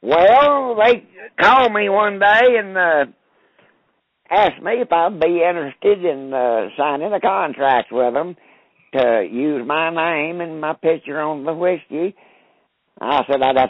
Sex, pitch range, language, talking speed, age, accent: male, 125-200 Hz, English, 155 wpm, 60-79, American